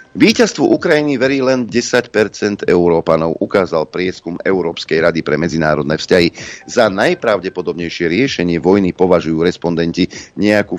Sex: male